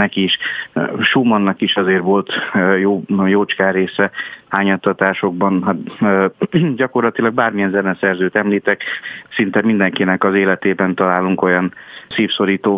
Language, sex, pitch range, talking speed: Hungarian, male, 95-105 Hz, 95 wpm